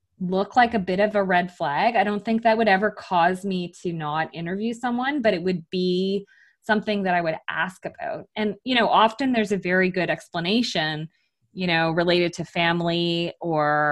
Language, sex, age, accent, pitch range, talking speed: English, female, 20-39, American, 165-215 Hz, 195 wpm